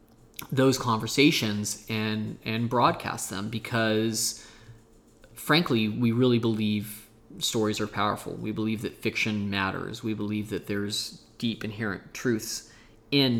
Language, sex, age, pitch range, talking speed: English, male, 20-39, 105-115 Hz, 120 wpm